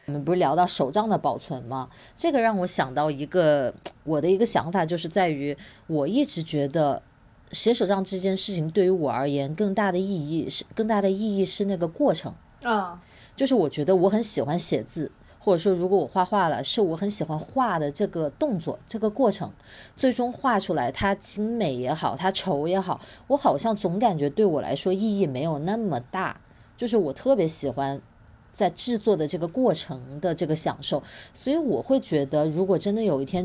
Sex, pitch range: female, 150-210 Hz